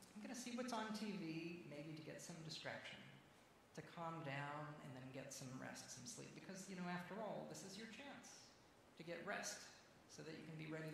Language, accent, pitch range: English, American, 135-180 Hz